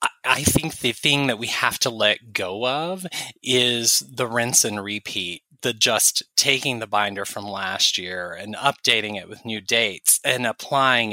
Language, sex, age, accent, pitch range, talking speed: English, male, 20-39, American, 110-140 Hz, 175 wpm